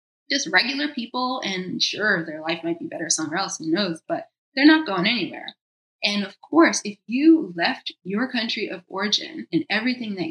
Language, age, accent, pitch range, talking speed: English, 20-39, American, 180-270 Hz, 185 wpm